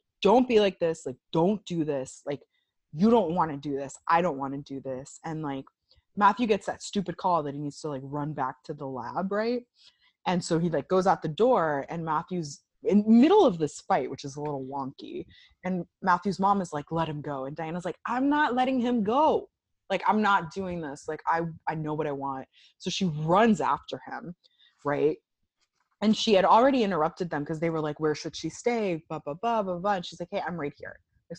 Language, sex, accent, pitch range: English, female, American, 150-200 Hz